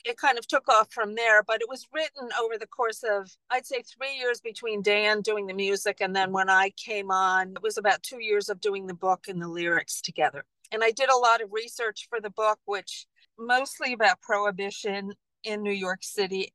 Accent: American